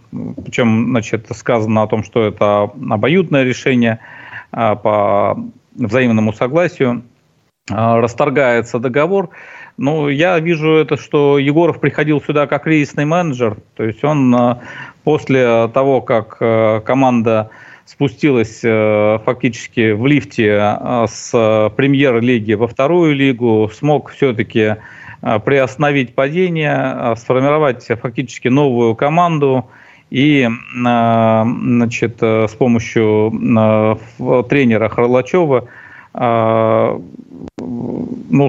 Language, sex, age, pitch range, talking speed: Russian, male, 40-59, 115-145 Hz, 85 wpm